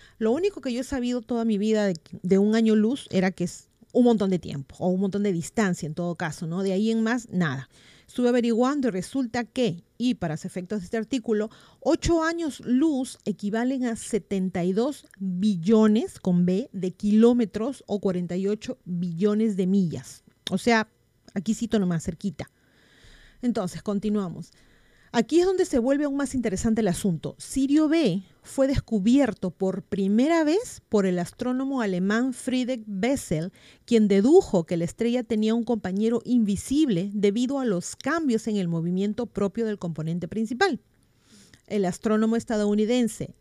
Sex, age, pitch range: female, 40-59, 185-240 Hz